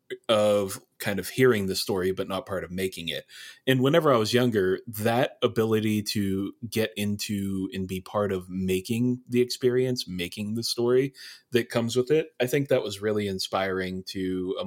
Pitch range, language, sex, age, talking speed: 95-120 Hz, English, male, 30-49, 180 wpm